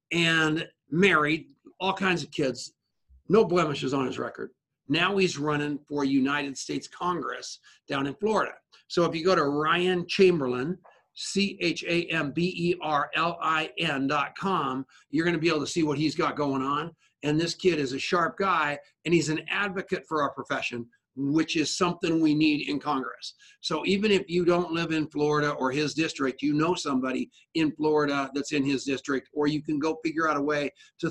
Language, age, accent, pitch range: English, 50-69, American, 140-170 Hz